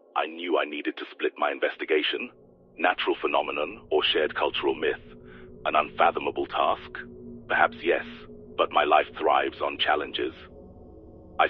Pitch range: 340-410 Hz